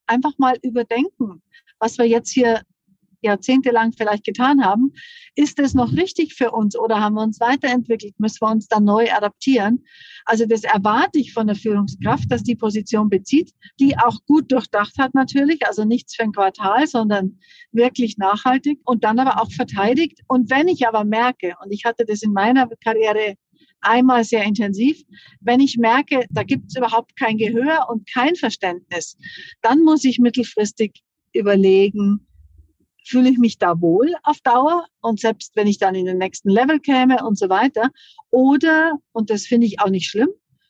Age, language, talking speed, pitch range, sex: 50-69, German, 175 wpm, 210-260 Hz, female